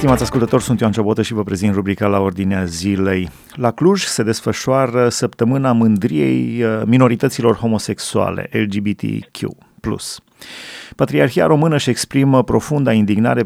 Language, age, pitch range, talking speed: Romanian, 30-49, 110-130 Hz, 120 wpm